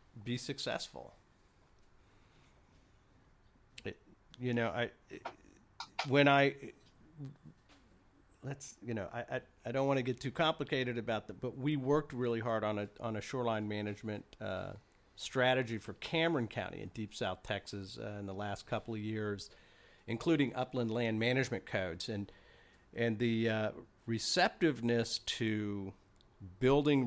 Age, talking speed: 50-69, 140 wpm